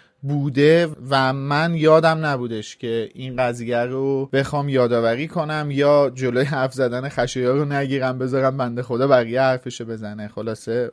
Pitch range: 115-145 Hz